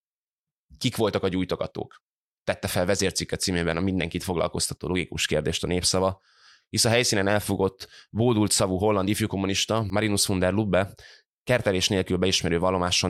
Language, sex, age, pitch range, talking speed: Hungarian, male, 20-39, 85-100 Hz, 145 wpm